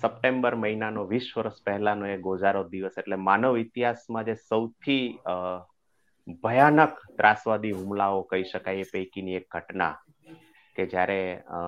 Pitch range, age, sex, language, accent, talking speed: 90-105 Hz, 30-49, male, Gujarati, native, 125 wpm